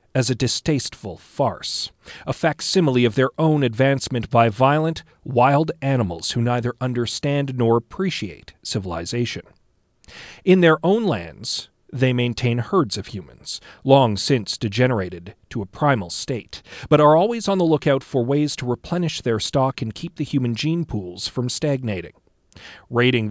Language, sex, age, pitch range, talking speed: English, male, 40-59, 110-145 Hz, 145 wpm